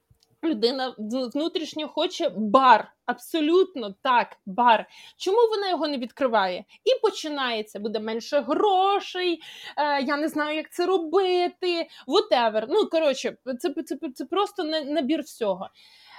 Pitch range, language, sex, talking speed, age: 280-370 Hz, Ukrainian, female, 120 wpm, 20-39